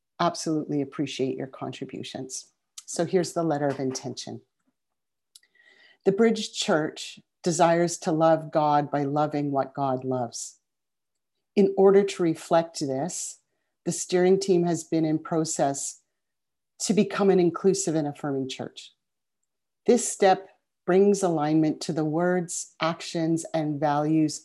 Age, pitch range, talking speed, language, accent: 40-59, 150-190 Hz, 125 wpm, English, American